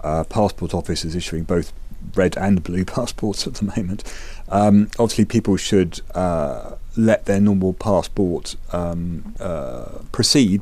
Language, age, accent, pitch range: Finnish, 40-59, British, 90-105 Hz